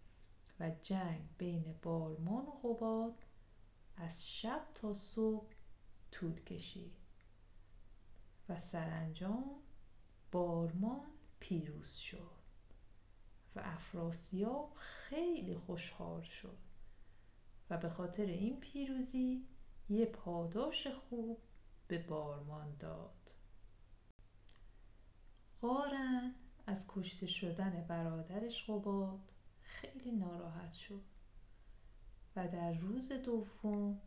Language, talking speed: Persian, 80 wpm